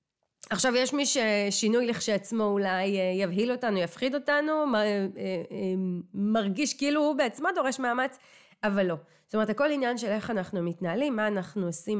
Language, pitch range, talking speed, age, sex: Hebrew, 195-270 Hz, 150 wpm, 30-49, female